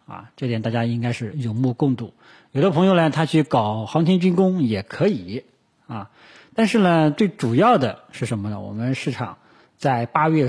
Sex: male